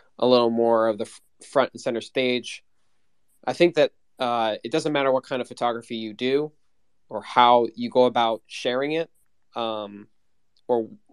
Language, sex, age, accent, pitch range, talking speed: English, male, 20-39, American, 115-140 Hz, 165 wpm